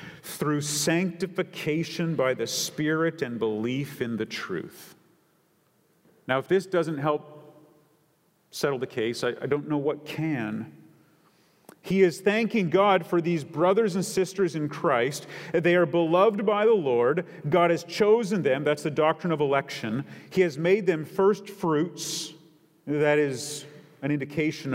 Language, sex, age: English, male, 40-59